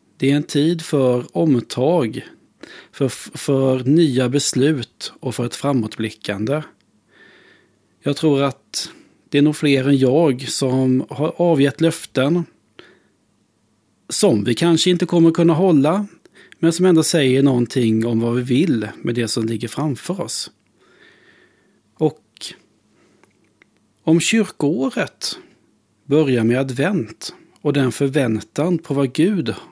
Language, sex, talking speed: Swedish, male, 125 wpm